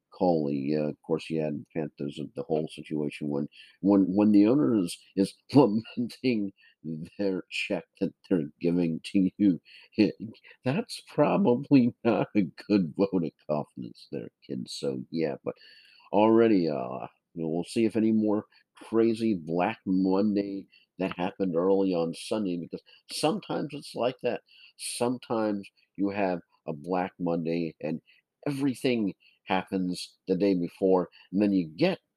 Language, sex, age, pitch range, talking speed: English, male, 50-69, 80-110 Hz, 145 wpm